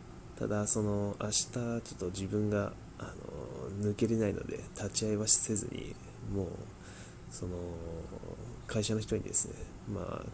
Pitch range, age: 95-110 Hz, 20-39